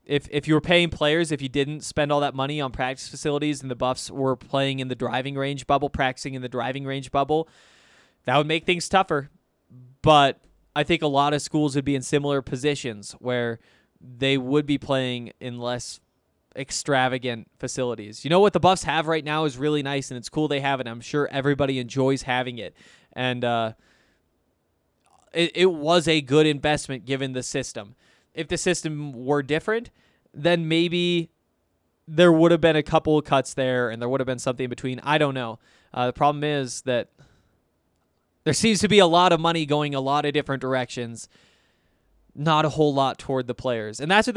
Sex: male